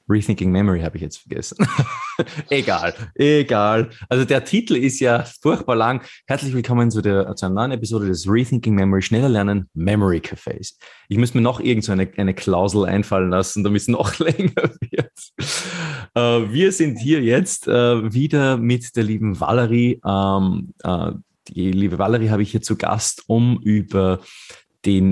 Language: German